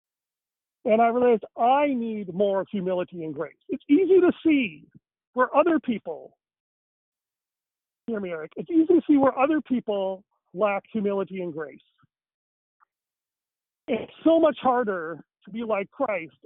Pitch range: 185-250 Hz